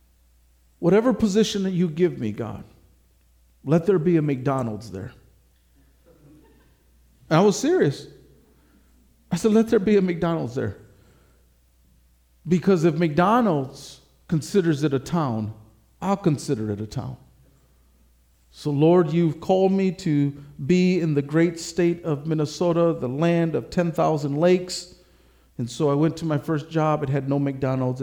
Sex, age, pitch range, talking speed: male, 50-69, 110-180 Hz, 140 wpm